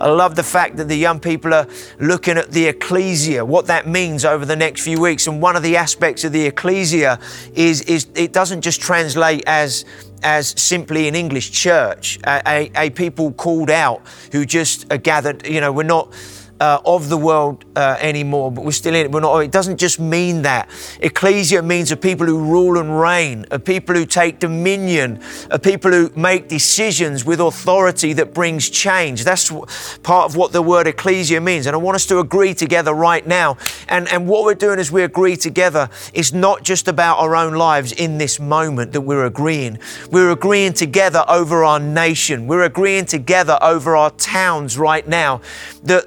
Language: English